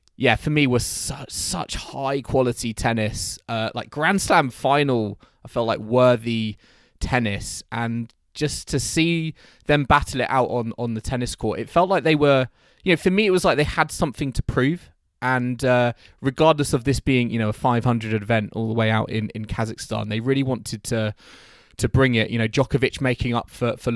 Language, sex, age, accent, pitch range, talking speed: English, male, 20-39, British, 120-160 Hz, 200 wpm